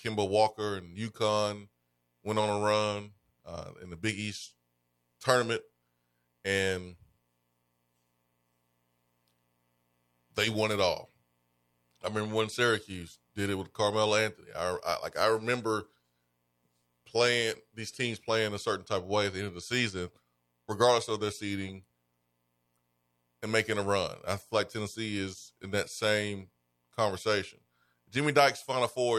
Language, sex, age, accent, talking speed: English, male, 30-49, American, 140 wpm